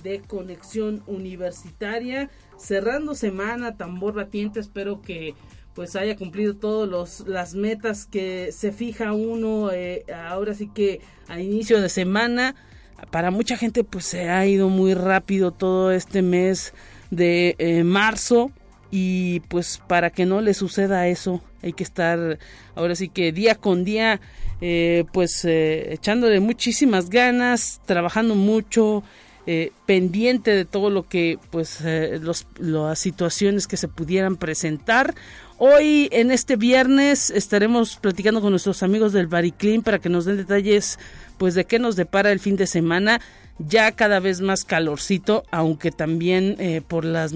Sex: male